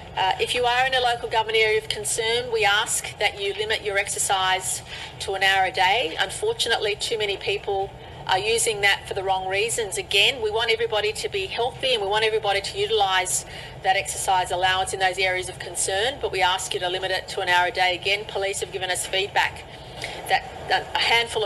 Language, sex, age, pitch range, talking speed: English, female, 40-59, 195-245 Hz, 215 wpm